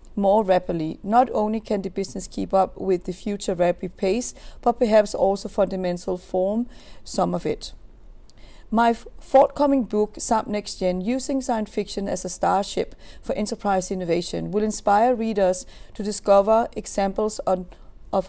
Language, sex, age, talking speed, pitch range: English, female, 40-59, 150 wpm, 185-220 Hz